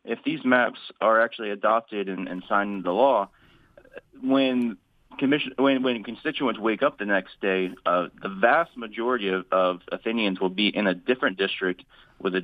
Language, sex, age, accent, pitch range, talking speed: English, male, 30-49, American, 95-115 Hz, 170 wpm